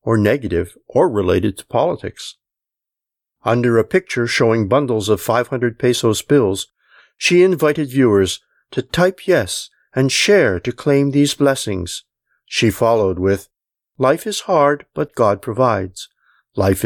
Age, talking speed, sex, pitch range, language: 50-69, 130 wpm, male, 100-140 Hz, English